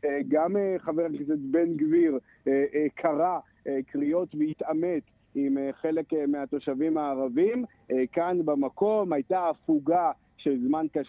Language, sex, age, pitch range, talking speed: Hebrew, male, 50-69, 140-185 Hz, 95 wpm